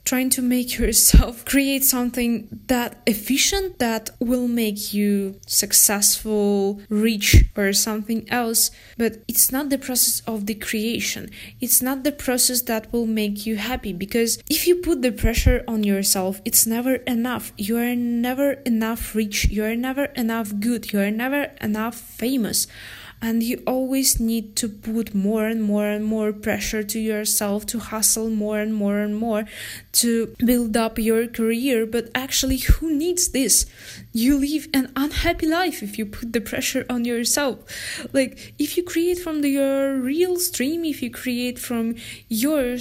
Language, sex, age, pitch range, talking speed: English, female, 20-39, 220-270 Hz, 165 wpm